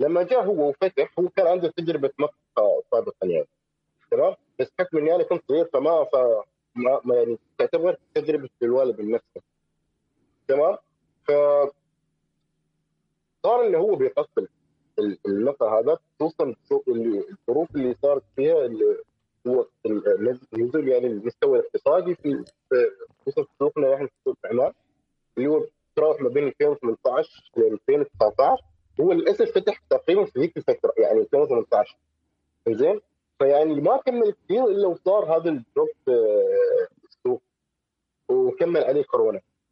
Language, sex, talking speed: Arabic, male, 125 wpm